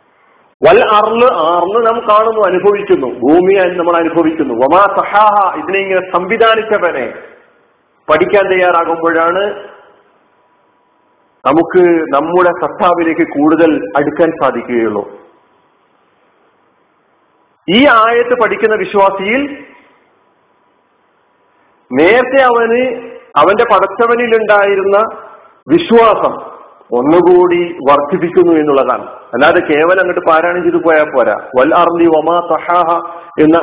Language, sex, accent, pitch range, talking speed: Malayalam, male, native, 160-220 Hz, 75 wpm